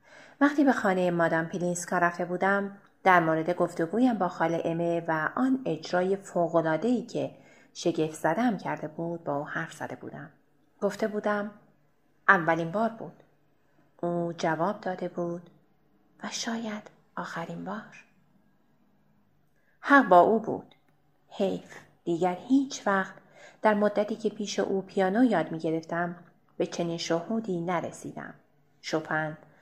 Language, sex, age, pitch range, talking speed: Persian, female, 30-49, 165-220 Hz, 125 wpm